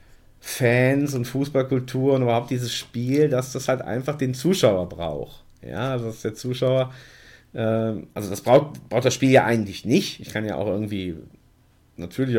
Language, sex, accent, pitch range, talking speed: German, male, German, 100-120 Hz, 170 wpm